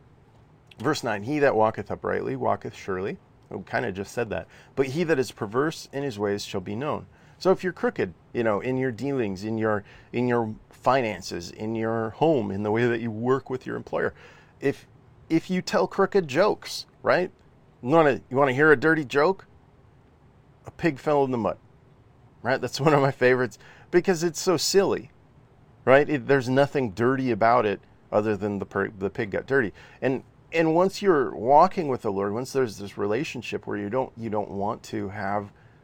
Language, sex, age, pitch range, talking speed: English, male, 40-59, 105-140 Hz, 200 wpm